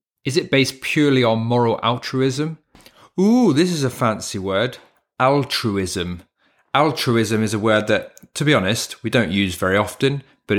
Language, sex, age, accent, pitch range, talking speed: English, male, 30-49, British, 100-125 Hz, 160 wpm